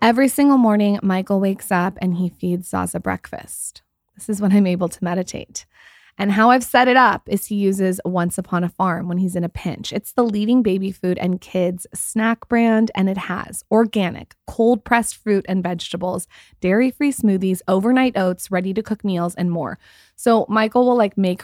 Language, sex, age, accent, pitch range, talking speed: English, female, 20-39, American, 180-215 Hz, 185 wpm